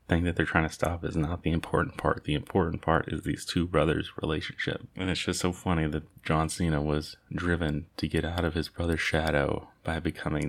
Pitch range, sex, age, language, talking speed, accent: 80-95 Hz, male, 30-49, English, 210 wpm, American